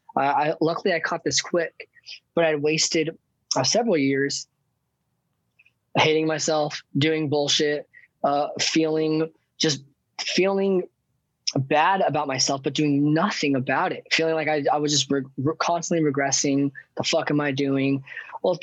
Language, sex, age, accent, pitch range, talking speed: English, male, 20-39, American, 140-165 Hz, 150 wpm